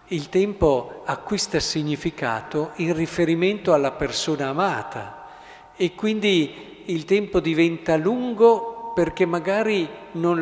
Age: 50-69